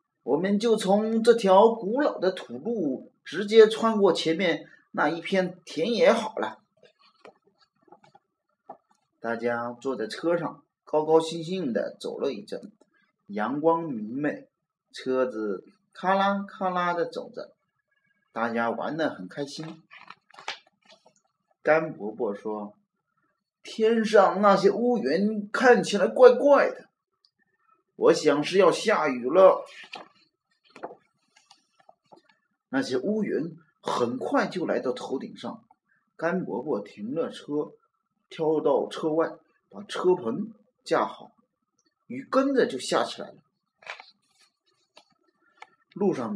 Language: Chinese